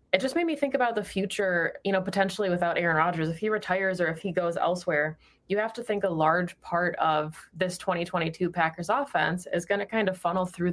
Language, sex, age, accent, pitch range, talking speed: English, female, 20-39, American, 165-185 Hz, 230 wpm